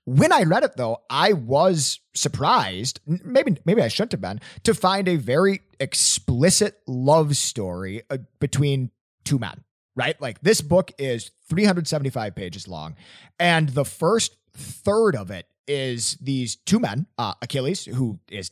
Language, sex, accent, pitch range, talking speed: English, male, American, 100-155 Hz, 150 wpm